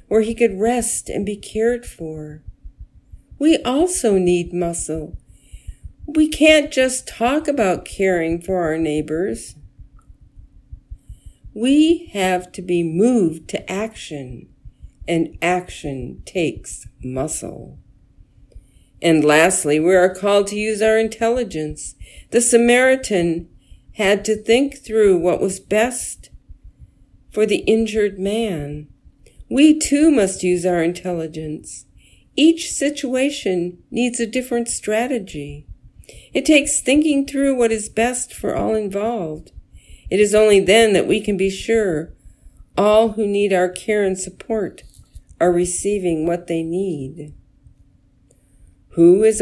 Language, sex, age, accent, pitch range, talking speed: English, female, 50-69, American, 160-230 Hz, 120 wpm